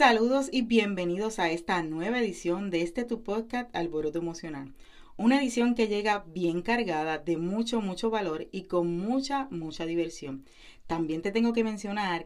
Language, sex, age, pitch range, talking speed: Spanish, female, 40-59, 170-230 Hz, 160 wpm